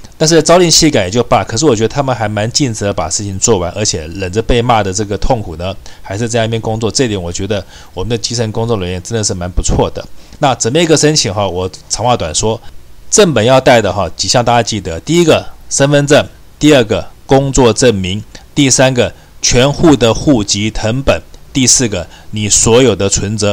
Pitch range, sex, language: 100-135 Hz, male, Chinese